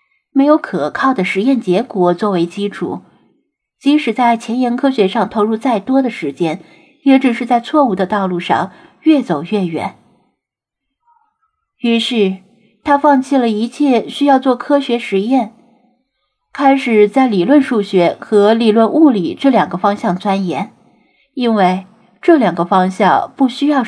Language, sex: Chinese, female